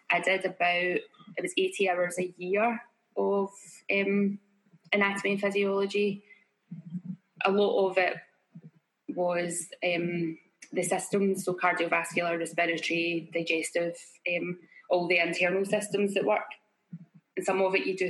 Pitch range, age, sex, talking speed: 175-195 Hz, 10-29, female, 130 wpm